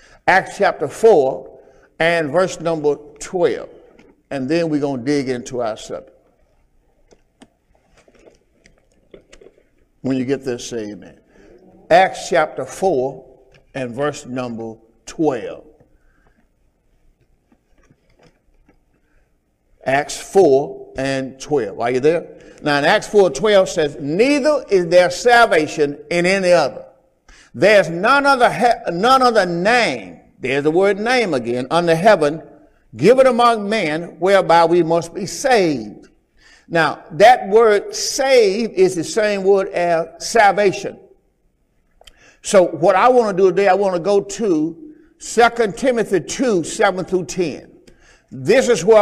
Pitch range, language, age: 145-220 Hz, English, 60-79